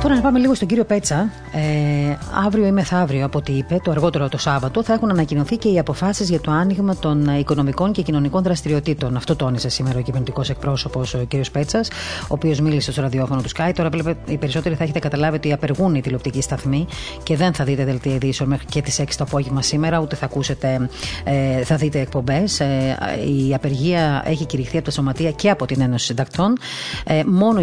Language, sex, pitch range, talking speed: Greek, female, 135-165 Hz, 200 wpm